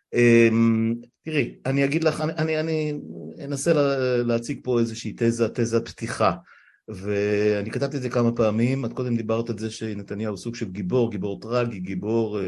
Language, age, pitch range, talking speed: Hebrew, 50-69, 105-125 Hz, 160 wpm